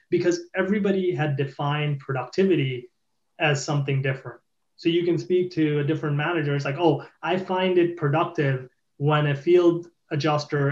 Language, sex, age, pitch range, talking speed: English, male, 30-49, 140-170 Hz, 150 wpm